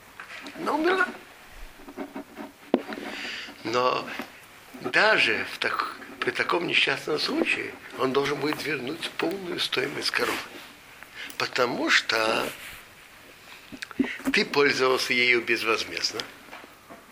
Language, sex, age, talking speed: Russian, male, 60-79, 80 wpm